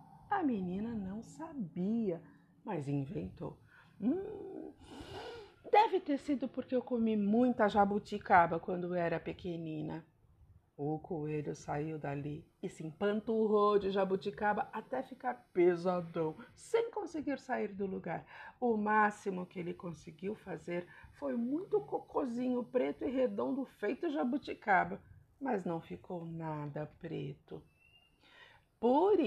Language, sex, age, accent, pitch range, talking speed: Portuguese, female, 50-69, Brazilian, 165-245 Hz, 115 wpm